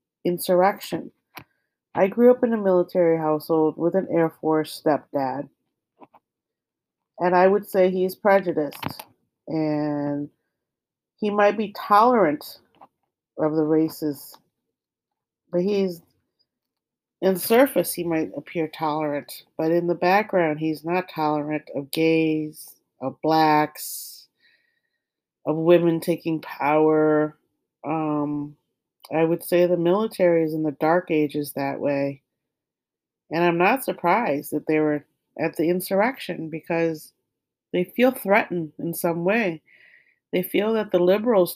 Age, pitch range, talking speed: 30-49, 155-185 Hz, 125 wpm